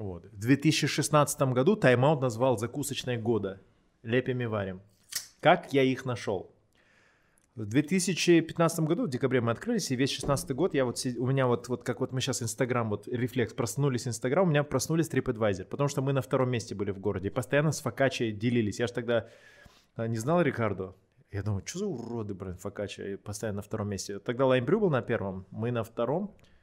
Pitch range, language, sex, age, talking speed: 115-145 Hz, Russian, male, 20-39, 190 wpm